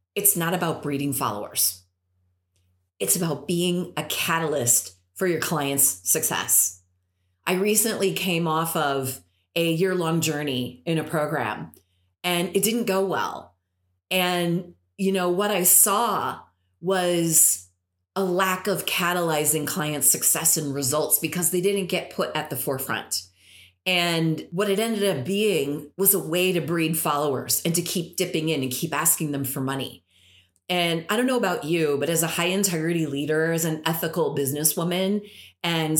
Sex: female